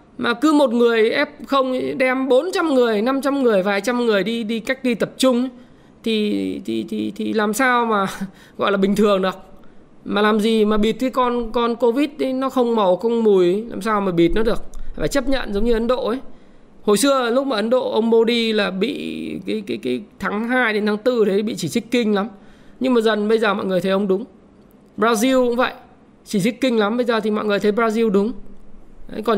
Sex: male